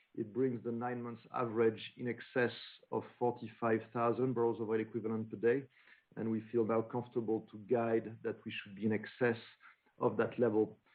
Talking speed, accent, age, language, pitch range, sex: 175 wpm, French, 50-69, English, 110-120 Hz, male